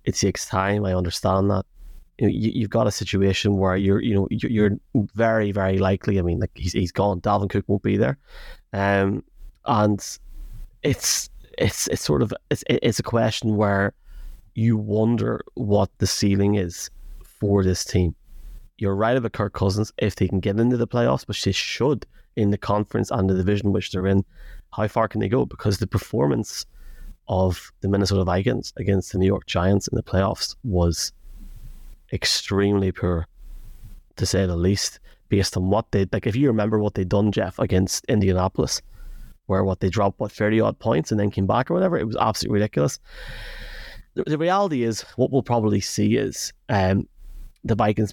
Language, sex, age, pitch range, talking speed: English, male, 30-49, 95-110 Hz, 180 wpm